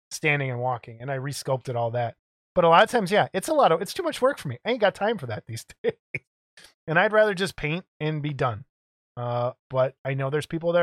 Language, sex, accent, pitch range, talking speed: English, male, American, 140-190 Hz, 260 wpm